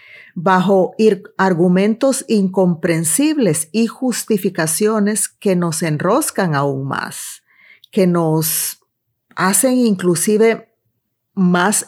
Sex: female